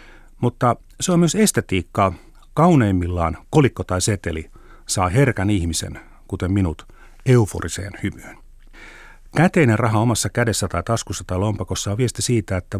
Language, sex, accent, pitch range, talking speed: Finnish, male, native, 90-125 Hz, 130 wpm